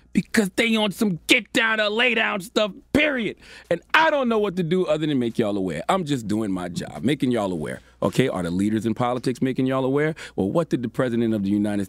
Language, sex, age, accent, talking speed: English, male, 40-59, American, 240 wpm